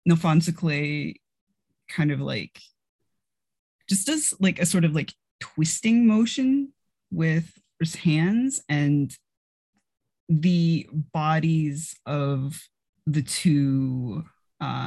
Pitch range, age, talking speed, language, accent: 140-185 Hz, 20-39, 95 wpm, English, American